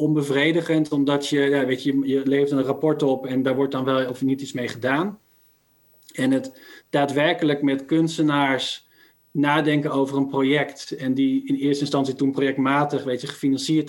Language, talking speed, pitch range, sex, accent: Dutch, 155 wpm, 135-150 Hz, male, Dutch